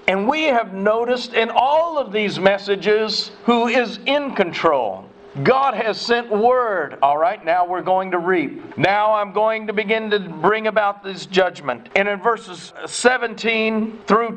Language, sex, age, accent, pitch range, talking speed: English, male, 50-69, American, 180-220 Hz, 165 wpm